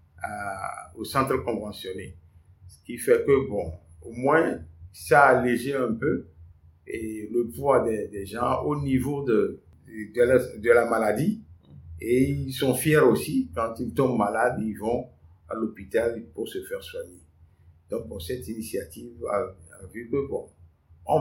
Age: 50-69